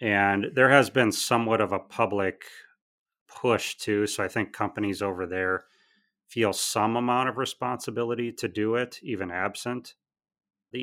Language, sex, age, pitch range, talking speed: English, male, 30-49, 95-120 Hz, 150 wpm